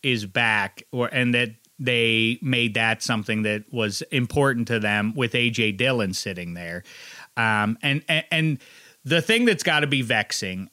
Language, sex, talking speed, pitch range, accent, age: English, male, 170 wpm, 110-145 Hz, American, 30-49